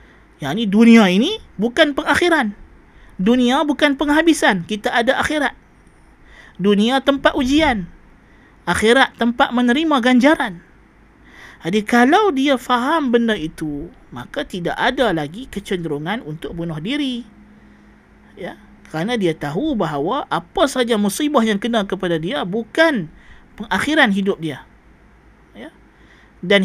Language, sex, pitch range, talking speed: Malay, male, 185-260 Hz, 115 wpm